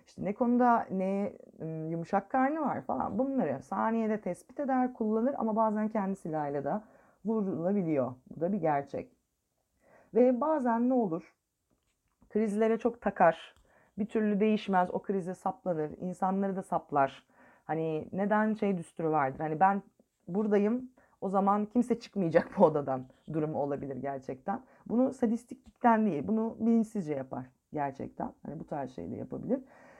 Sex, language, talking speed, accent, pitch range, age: female, Turkish, 135 wpm, native, 160-225 Hz, 30-49